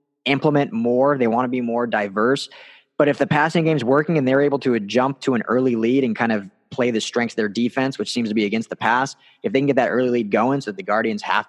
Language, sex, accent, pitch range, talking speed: English, male, American, 115-135 Hz, 270 wpm